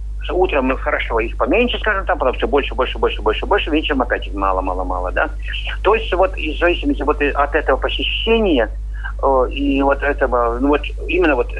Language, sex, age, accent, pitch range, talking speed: Russian, male, 50-69, native, 130-210 Hz, 190 wpm